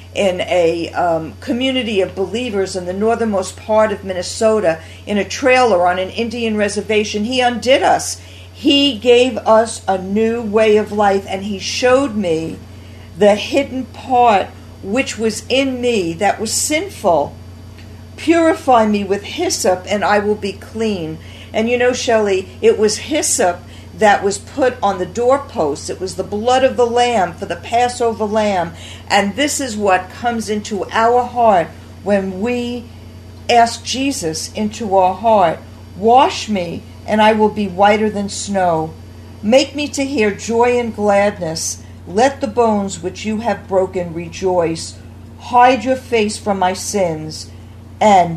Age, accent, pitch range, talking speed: 50-69, American, 185-240 Hz, 155 wpm